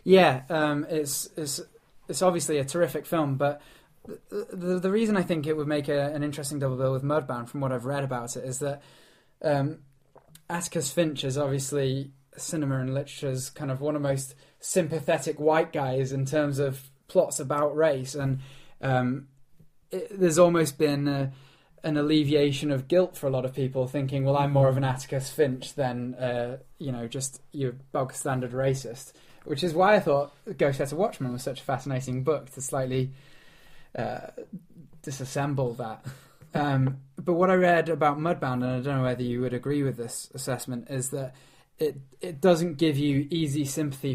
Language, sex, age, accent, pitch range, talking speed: English, male, 10-29, British, 130-155 Hz, 185 wpm